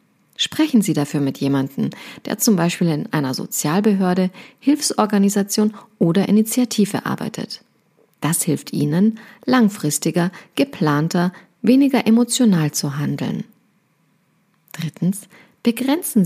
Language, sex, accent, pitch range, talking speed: German, female, German, 170-230 Hz, 95 wpm